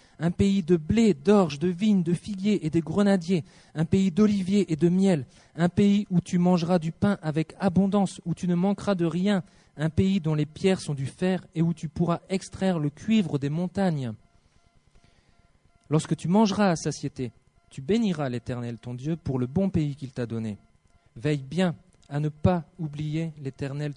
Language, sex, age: English, male, 40-59